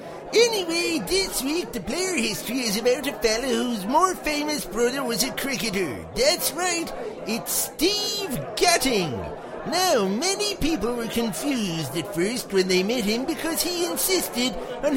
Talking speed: 150 wpm